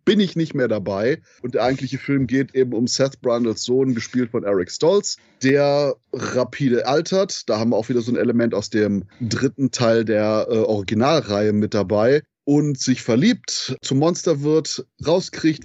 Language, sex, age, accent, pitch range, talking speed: German, male, 20-39, German, 115-145 Hz, 175 wpm